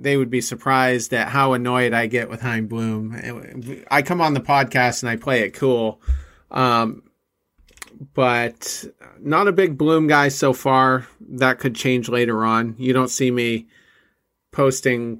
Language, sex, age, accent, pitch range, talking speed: English, male, 40-59, American, 120-145 Hz, 160 wpm